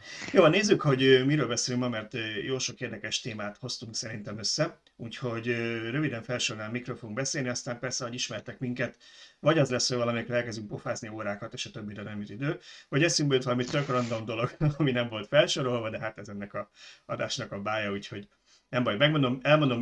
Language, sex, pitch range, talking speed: Hungarian, male, 110-130 Hz, 190 wpm